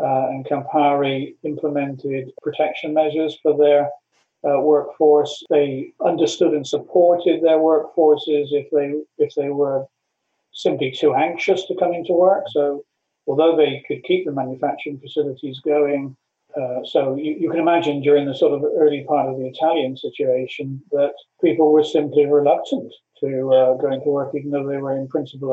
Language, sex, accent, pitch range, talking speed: English, male, British, 145-155 Hz, 160 wpm